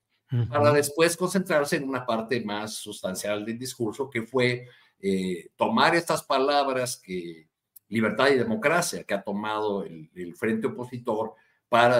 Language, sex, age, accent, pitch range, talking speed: Spanish, male, 50-69, Mexican, 105-125 Hz, 140 wpm